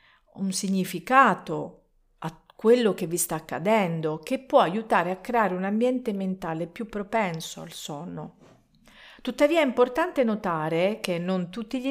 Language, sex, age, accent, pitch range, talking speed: Italian, female, 50-69, native, 165-230 Hz, 140 wpm